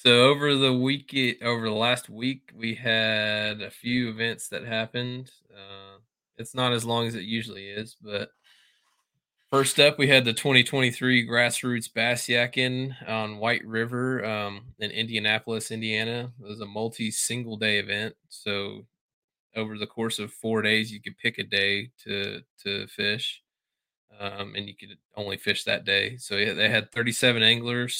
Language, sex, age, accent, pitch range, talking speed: English, male, 20-39, American, 105-120 Hz, 165 wpm